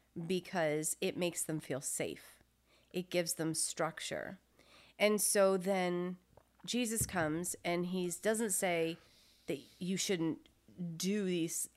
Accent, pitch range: American, 170-210 Hz